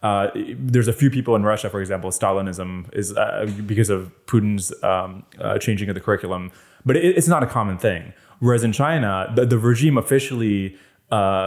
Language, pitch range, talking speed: English, 100-130 Hz, 190 wpm